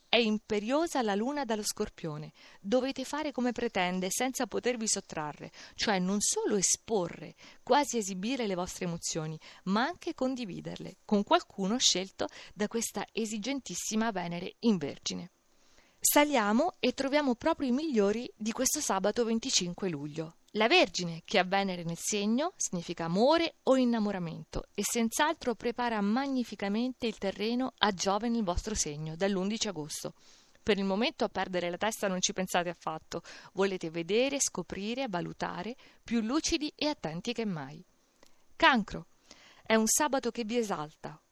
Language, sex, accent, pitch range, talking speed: Italian, female, native, 185-245 Hz, 140 wpm